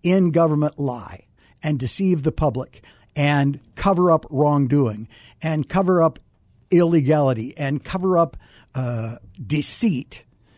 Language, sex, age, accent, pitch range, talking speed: English, male, 50-69, American, 145-195 Hz, 110 wpm